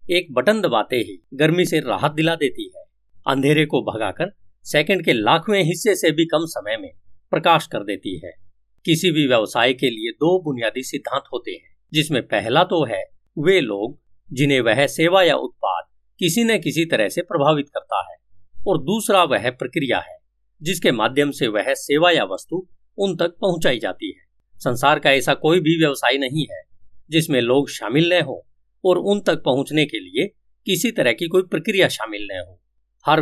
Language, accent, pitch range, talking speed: Hindi, native, 130-185 Hz, 180 wpm